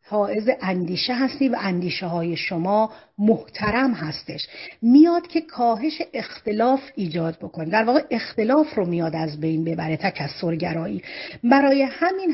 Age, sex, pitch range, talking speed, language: 40-59, female, 190-250 Hz, 125 wpm, Persian